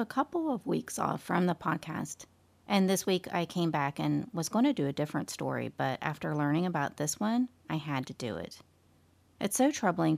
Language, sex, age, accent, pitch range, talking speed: English, female, 30-49, American, 125-200 Hz, 210 wpm